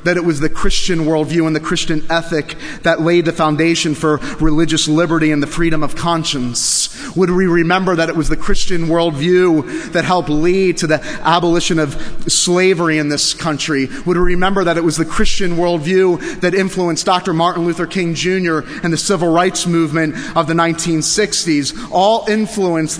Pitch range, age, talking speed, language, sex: 110-165 Hz, 30-49, 175 wpm, English, male